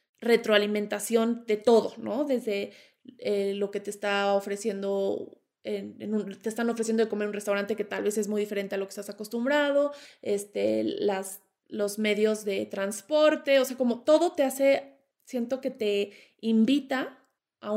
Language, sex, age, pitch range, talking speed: Spanish, female, 20-39, 205-245 Hz, 170 wpm